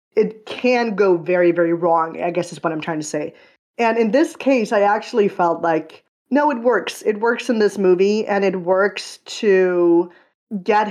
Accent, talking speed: American, 195 wpm